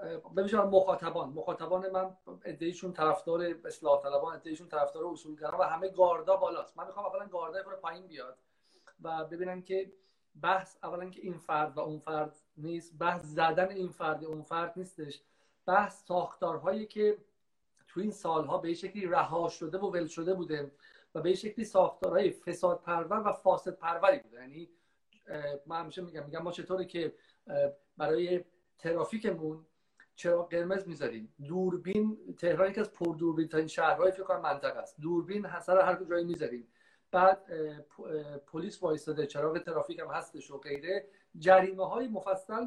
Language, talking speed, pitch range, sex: Persian, 150 wpm, 165-190 Hz, male